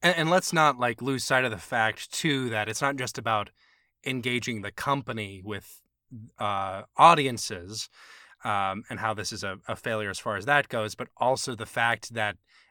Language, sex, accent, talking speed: English, male, American, 185 wpm